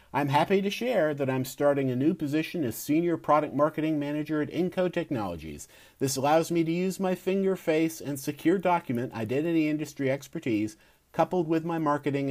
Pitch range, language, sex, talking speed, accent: 105-145 Hz, English, male, 175 wpm, American